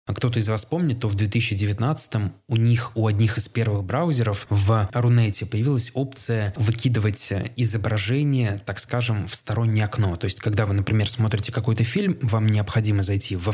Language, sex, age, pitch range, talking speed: Russian, male, 20-39, 105-120 Hz, 165 wpm